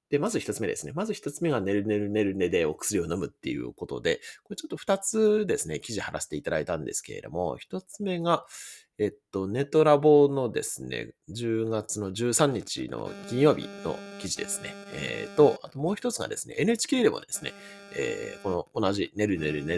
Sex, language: male, Japanese